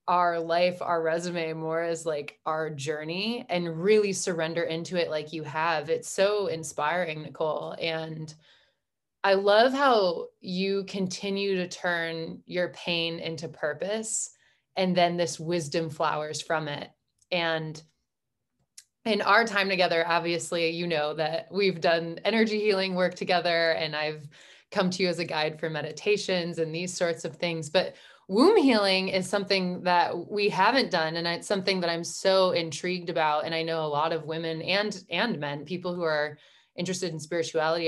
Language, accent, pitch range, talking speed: English, American, 160-185 Hz, 165 wpm